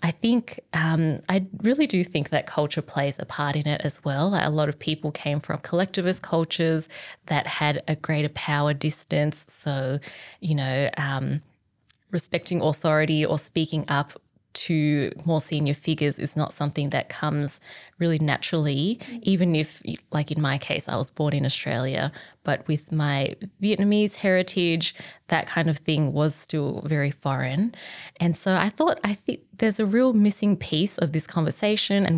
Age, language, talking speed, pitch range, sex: 20-39, English, 165 wpm, 145-175 Hz, female